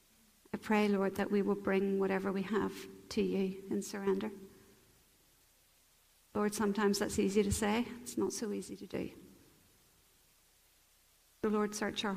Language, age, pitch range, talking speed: English, 40-59, 195-210 Hz, 150 wpm